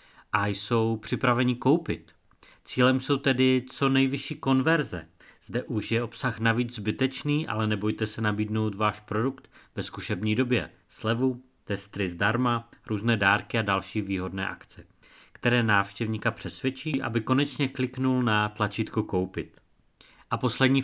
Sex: male